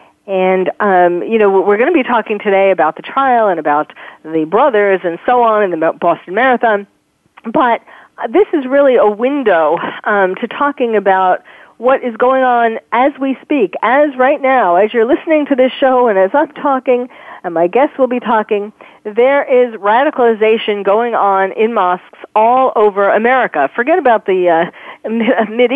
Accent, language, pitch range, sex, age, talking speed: American, English, 185-245 Hz, female, 40-59, 175 wpm